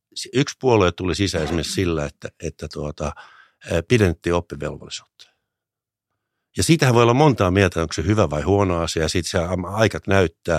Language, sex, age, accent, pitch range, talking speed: Finnish, male, 60-79, native, 85-120 Hz, 145 wpm